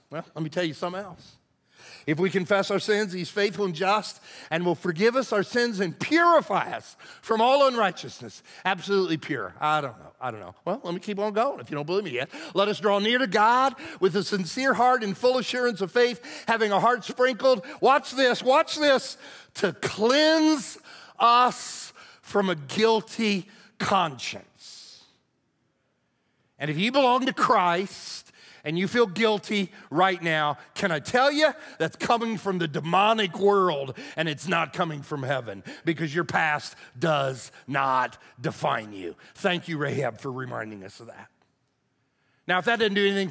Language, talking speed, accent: English, 175 wpm, American